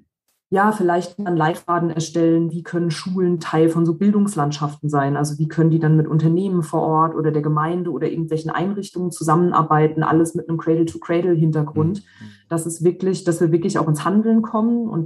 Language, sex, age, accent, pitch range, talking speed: German, female, 20-39, German, 155-185 Hz, 175 wpm